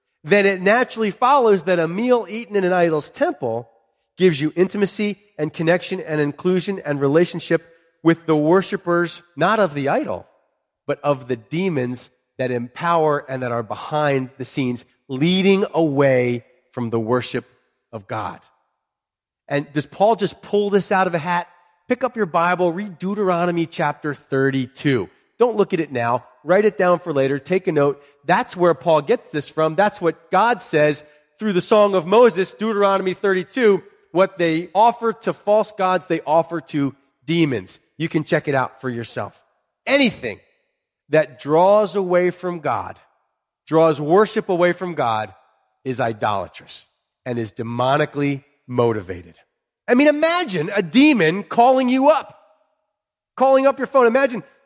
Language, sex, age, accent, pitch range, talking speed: English, male, 30-49, American, 140-205 Hz, 155 wpm